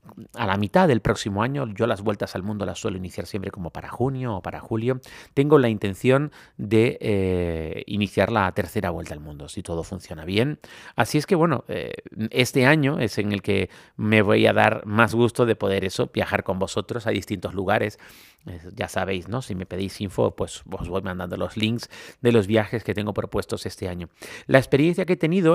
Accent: Mexican